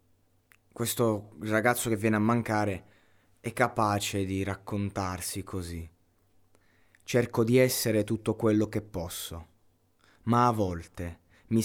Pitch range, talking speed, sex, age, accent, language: 90-110 Hz, 115 wpm, male, 20-39, native, Italian